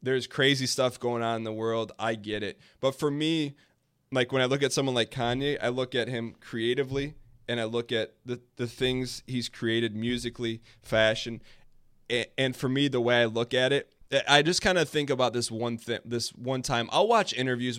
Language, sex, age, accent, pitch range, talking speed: English, male, 20-39, American, 110-125 Hz, 210 wpm